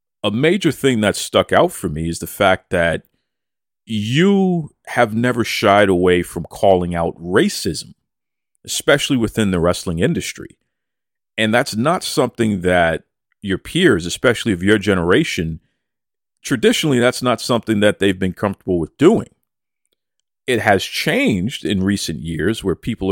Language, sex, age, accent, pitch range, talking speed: English, male, 40-59, American, 95-125 Hz, 145 wpm